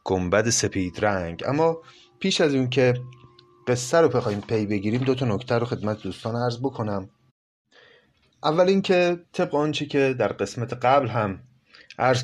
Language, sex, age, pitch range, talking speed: Persian, male, 30-49, 95-140 Hz, 150 wpm